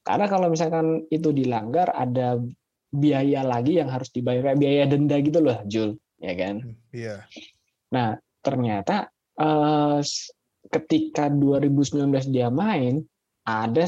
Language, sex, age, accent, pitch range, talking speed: Indonesian, male, 20-39, native, 120-155 Hz, 120 wpm